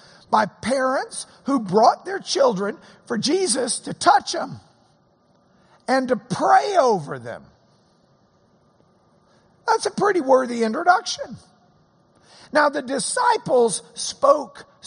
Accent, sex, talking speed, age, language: American, male, 100 wpm, 60-79, English